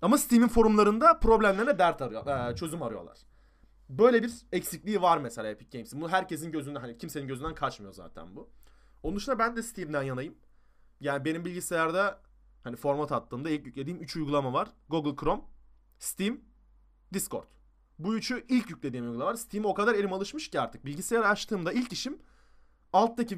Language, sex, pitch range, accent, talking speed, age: Turkish, male, 150-225 Hz, native, 160 wpm, 30-49